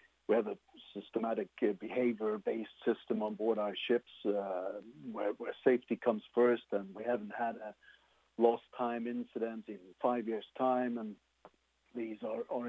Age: 60-79